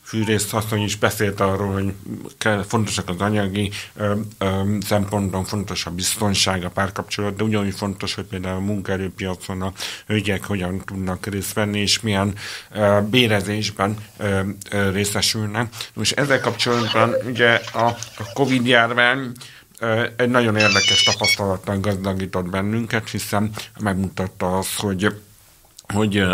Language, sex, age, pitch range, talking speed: Hungarian, male, 60-79, 100-110 Hz, 125 wpm